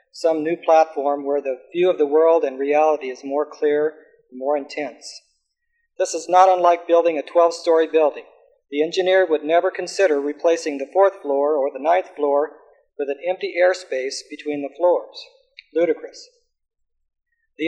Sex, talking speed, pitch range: male, 160 wpm, 155-185 Hz